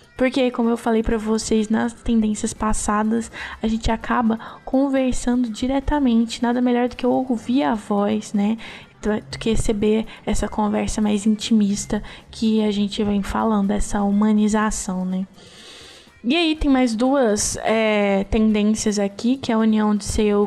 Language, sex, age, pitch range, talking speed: Portuguese, female, 10-29, 215-255 Hz, 150 wpm